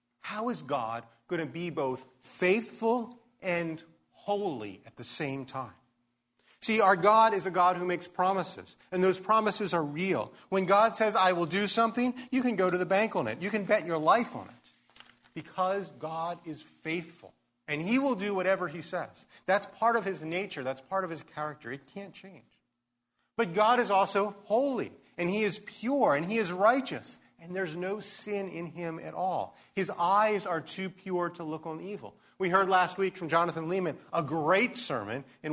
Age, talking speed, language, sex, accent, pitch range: 40-59, 195 wpm, English, male, American, 150-205 Hz